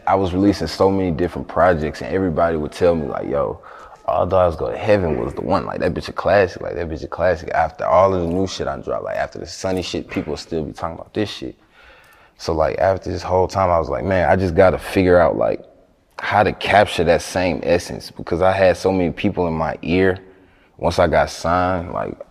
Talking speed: 235 wpm